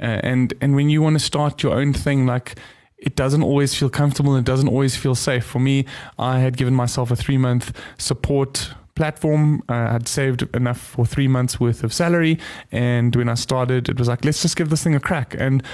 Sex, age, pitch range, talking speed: male, 20-39, 125-145 Hz, 215 wpm